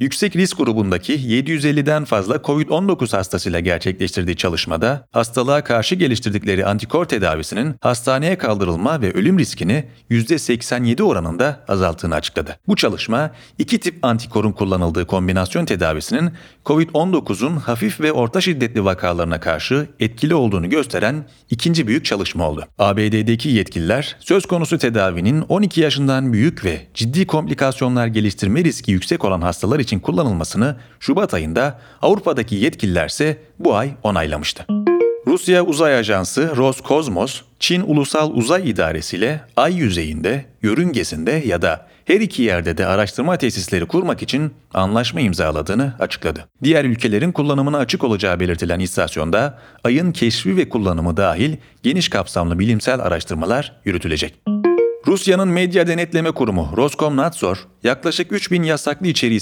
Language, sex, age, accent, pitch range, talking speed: Turkish, male, 40-59, native, 100-155 Hz, 125 wpm